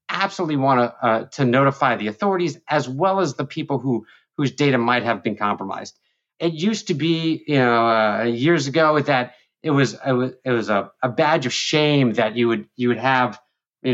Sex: male